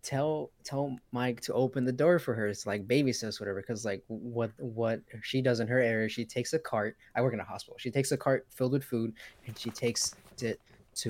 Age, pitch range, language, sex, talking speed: 20-39, 105-125 Hz, English, male, 230 wpm